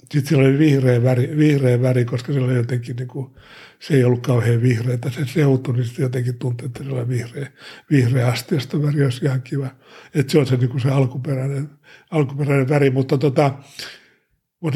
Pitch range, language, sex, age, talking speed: 130-155 Hz, Finnish, male, 60-79, 175 wpm